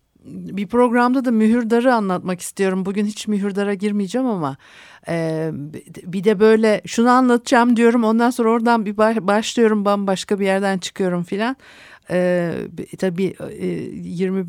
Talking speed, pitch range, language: 125 wpm, 160-210 Hz, Turkish